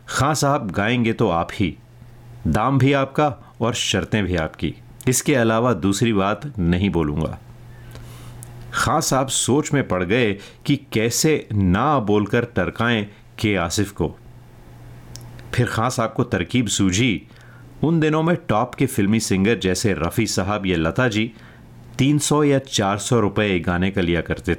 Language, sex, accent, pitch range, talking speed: Hindi, male, native, 100-125 Hz, 150 wpm